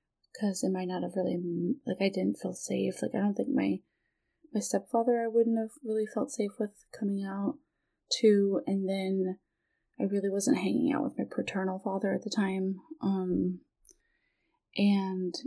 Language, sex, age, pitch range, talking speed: English, female, 20-39, 185-230 Hz, 170 wpm